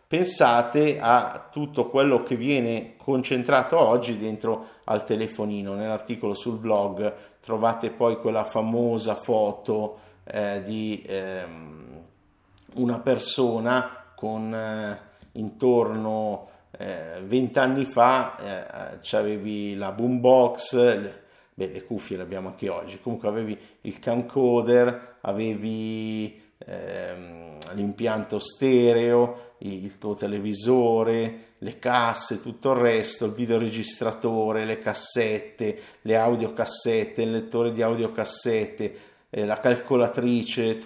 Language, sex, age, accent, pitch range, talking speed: Italian, male, 50-69, native, 105-120 Hz, 105 wpm